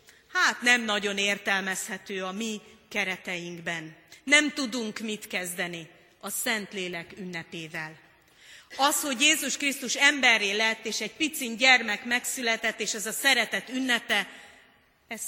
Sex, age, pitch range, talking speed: female, 30-49, 200-255 Hz, 120 wpm